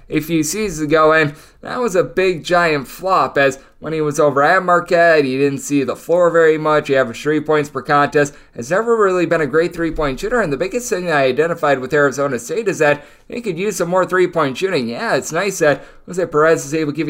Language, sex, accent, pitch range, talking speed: English, male, American, 150-190 Hz, 240 wpm